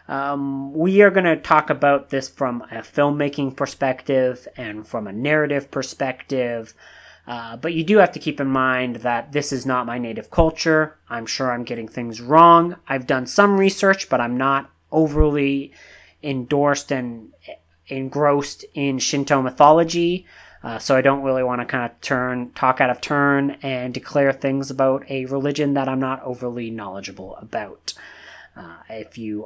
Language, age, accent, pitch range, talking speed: English, 30-49, American, 125-165 Hz, 165 wpm